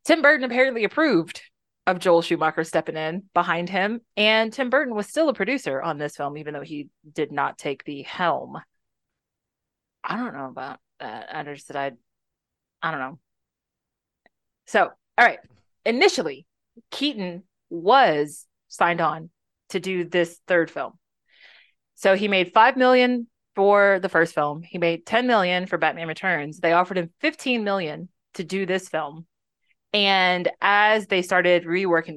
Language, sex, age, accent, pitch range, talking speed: English, female, 30-49, American, 160-200 Hz, 155 wpm